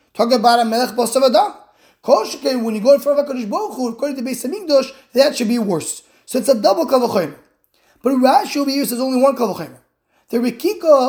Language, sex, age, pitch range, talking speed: English, male, 20-39, 230-280 Hz, 210 wpm